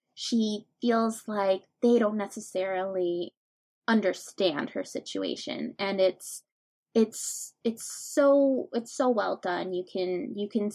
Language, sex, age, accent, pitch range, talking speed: English, female, 20-39, American, 200-250 Hz, 125 wpm